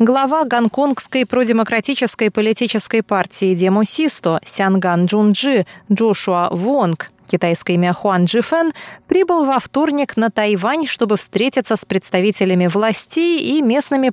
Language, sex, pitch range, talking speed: Russian, female, 190-250 Hz, 110 wpm